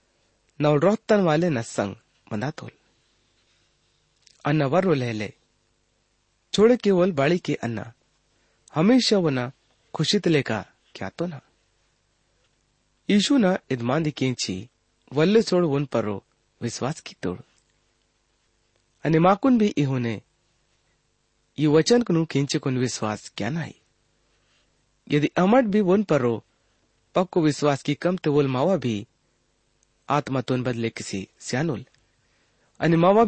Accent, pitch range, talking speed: Indian, 115-170 Hz, 65 wpm